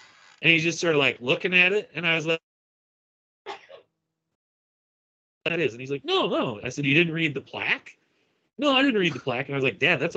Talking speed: 230 wpm